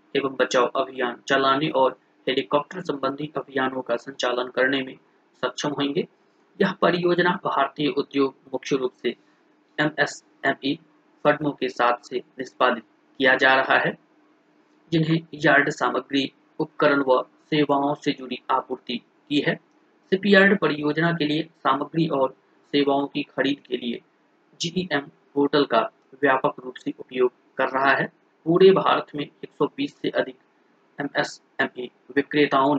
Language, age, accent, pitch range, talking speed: Hindi, 30-49, native, 130-160 Hz, 125 wpm